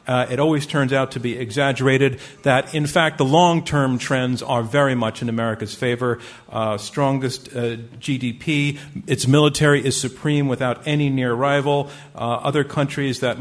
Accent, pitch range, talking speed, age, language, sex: American, 120-140 Hz, 160 wpm, 50-69, English, male